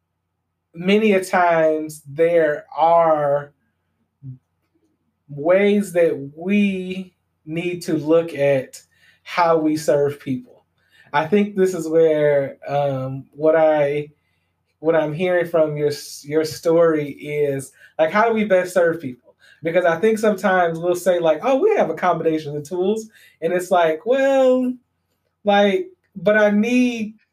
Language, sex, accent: English, male, American